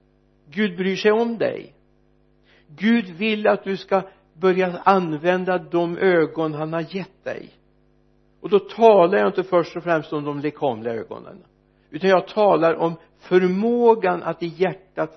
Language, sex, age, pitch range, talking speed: Swedish, male, 60-79, 120-185 Hz, 150 wpm